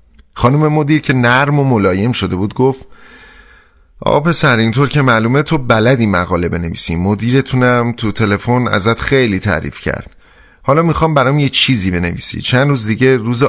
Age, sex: 30-49, male